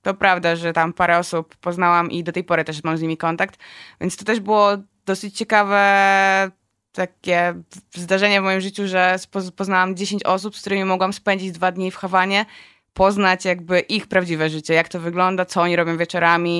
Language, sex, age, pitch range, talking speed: Polish, female, 20-39, 170-190 Hz, 185 wpm